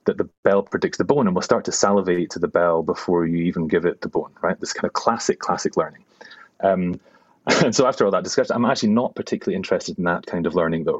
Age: 30-49